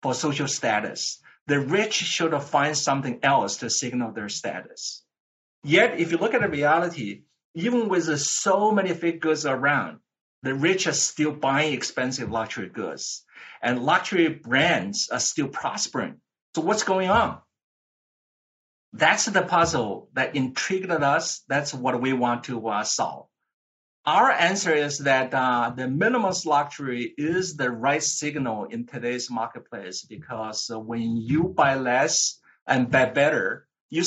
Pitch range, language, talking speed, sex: 125-170 Hz, English, 145 wpm, male